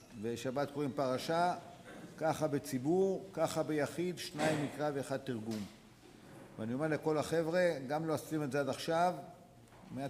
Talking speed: 135 wpm